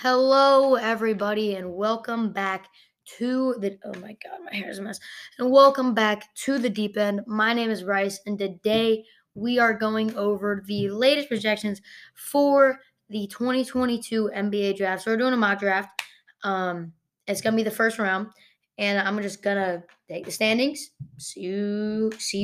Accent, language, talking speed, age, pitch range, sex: American, English, 165 wpm, 20-39, 200-255 Hz, female